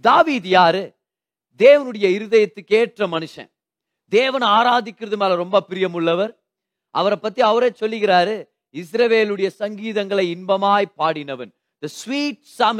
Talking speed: 55 wpm